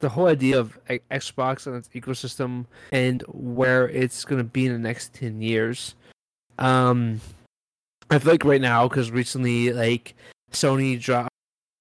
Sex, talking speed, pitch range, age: male, 160 wpm, 125-150 Hz, 20-39